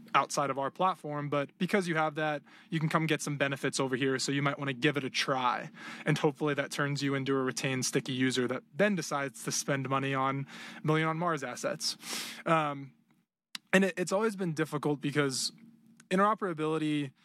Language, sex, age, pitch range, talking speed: English, male, 20-39, 135-170 Hz, 190 wpm